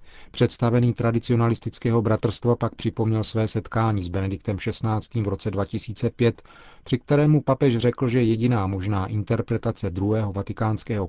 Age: 40-59